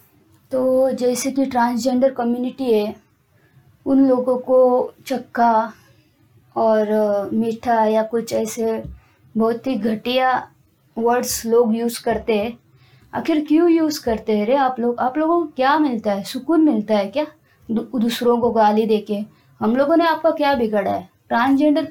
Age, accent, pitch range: 20-39, native, 225-285 Hz